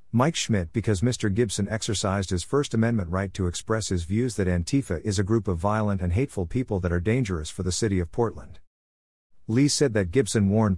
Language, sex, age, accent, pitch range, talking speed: English, male, 50-69, American, 90-115 Hz, 205 wpm